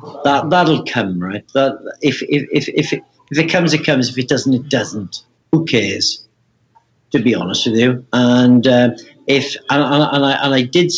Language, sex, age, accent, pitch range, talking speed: English, male, 60-79, British, 125-165 Hz, 200 wpm